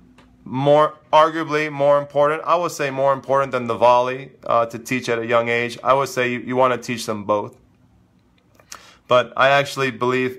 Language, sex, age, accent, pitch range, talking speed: English, male, 30-49, American, 115-140 Hz, 190 wpm